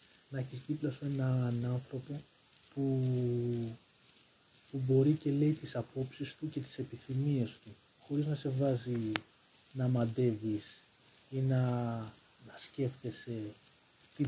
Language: Greek